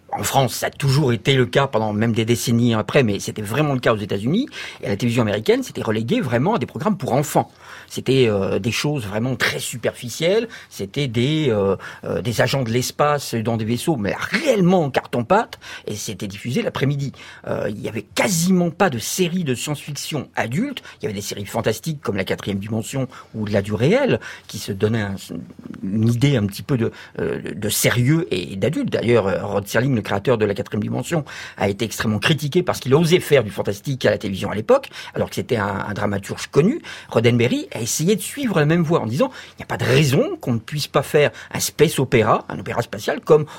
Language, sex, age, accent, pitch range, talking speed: French, male, 50-69, French, 110-150 Hz, 215 wpm